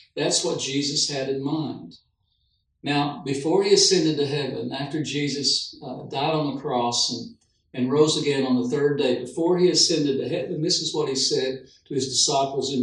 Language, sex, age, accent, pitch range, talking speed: English, male, 60-79, American, 125-160 Hz, 190 wpm